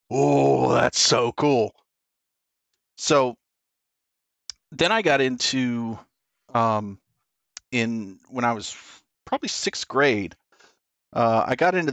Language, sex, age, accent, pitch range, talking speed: English, male, 40-59, American, 105-130 Hz, 105 wpm